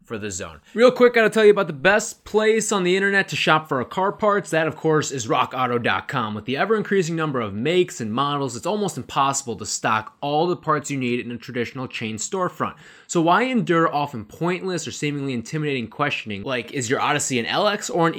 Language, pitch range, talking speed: English, 120-175 Hz, 215 wpm